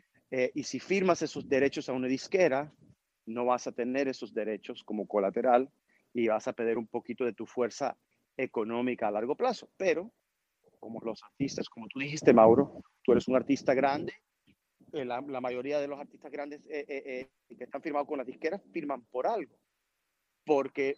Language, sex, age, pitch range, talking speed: Spanish, male, 40-59, 125-155 Hz, 185 wpm